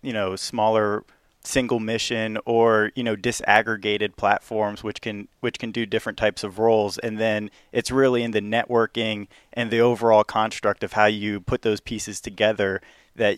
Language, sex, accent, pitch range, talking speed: English, male, American, 105-115 Hz, 170 wpm